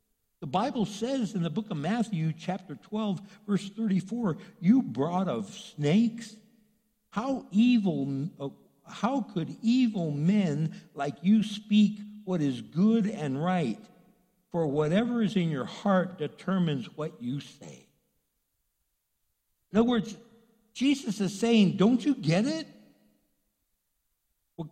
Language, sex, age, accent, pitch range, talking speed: English, male, 60-79, American, 155-215 Hz, 125 wpm